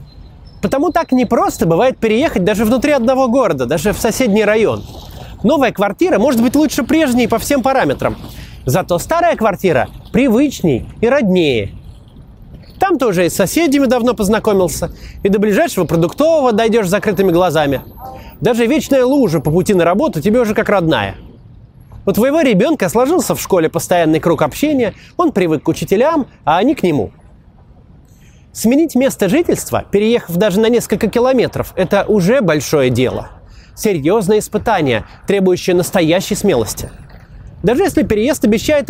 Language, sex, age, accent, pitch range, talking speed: Russian, male, 30-49, native, 180-260 Hz, 140 wpm